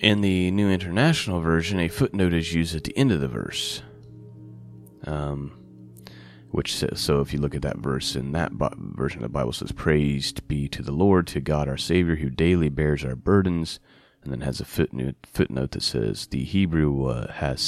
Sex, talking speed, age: male, 200 wpm, 30-49